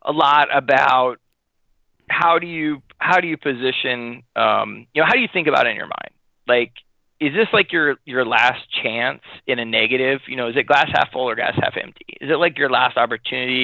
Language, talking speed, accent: English, 220 wpm, American